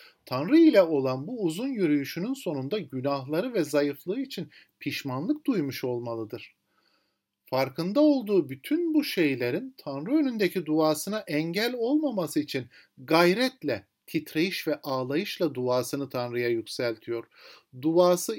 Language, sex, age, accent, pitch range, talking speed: Turkish, male, 50-69, native, 135-195 Hz, 110 wpm